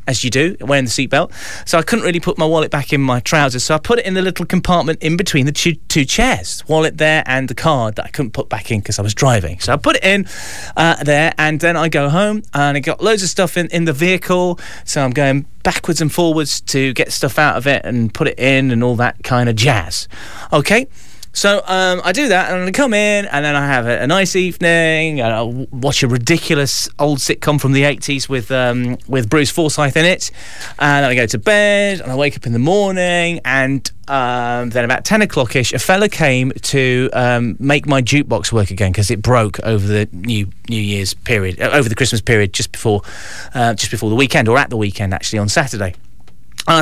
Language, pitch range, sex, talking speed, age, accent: English, 120-165 Hz, male, 235 wpm, 30-49, British